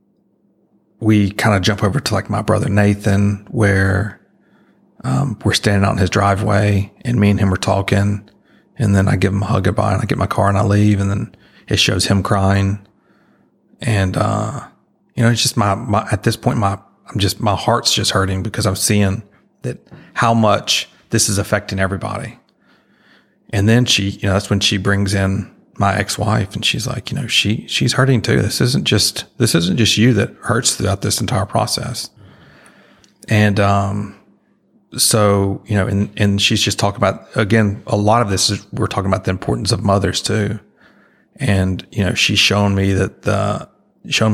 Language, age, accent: English, 40-59, American